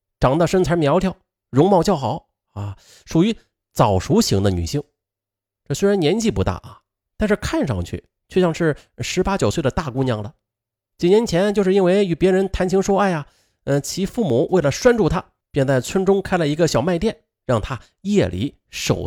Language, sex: Chinese, male